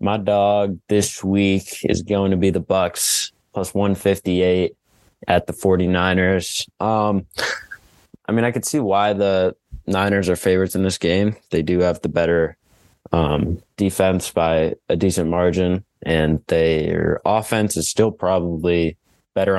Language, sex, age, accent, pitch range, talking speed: English, male, 20-39, American, 90-100 Hz, 145 wpm